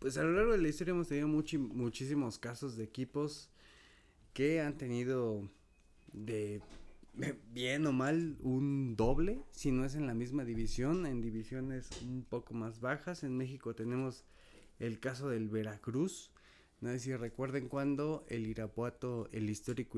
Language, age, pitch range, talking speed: Spanish, 30-49, 115-140 Hz, 155 wpm